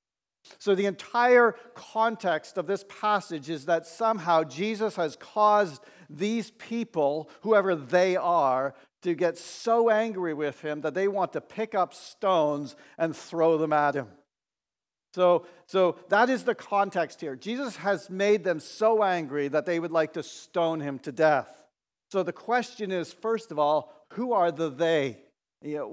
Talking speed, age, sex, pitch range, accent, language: 160 wpm, 50-69, male, 150-195 Hz, American, English